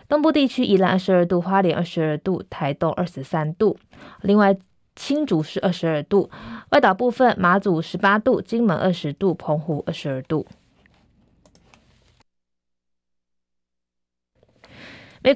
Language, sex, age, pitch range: Chinese, female, 20-39, 160-210 Hz